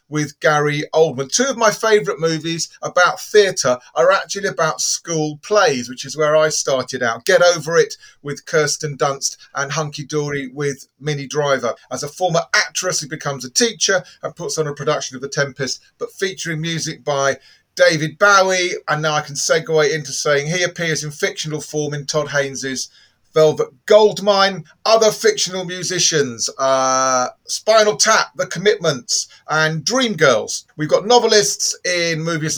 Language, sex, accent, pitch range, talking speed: English, male, British, 145-185 Hz, 160 wpm